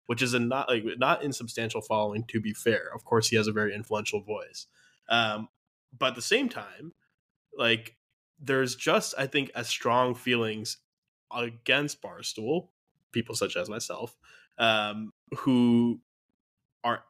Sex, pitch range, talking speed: male, 110-135 Hz, 145 wpm